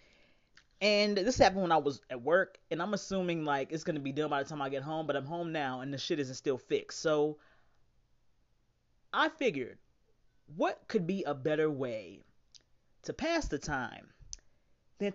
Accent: American